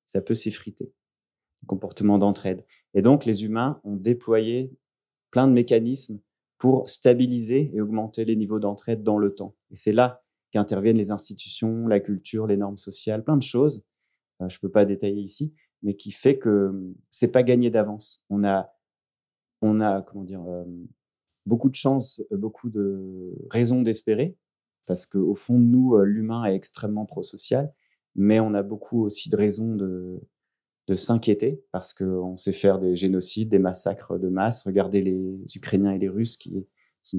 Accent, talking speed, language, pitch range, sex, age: French, 170 wpm, French, 100-115 Hz, male, 30-49